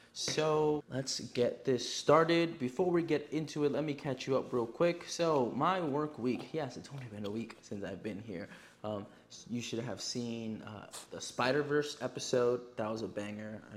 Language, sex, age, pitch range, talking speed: English, male, 20-39, 105-135 Hz, 190 wpm